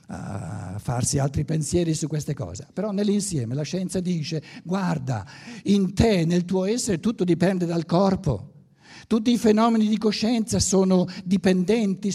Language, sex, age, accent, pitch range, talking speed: Italian, male, 60-79, native, 130-180 Hz, 145 wpm